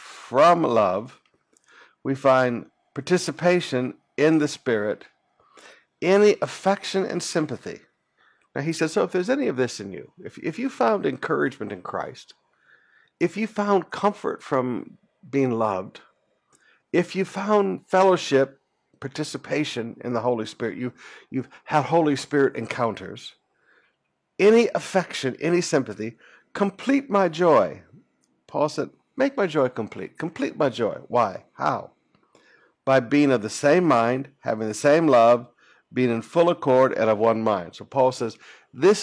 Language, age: English, 60-79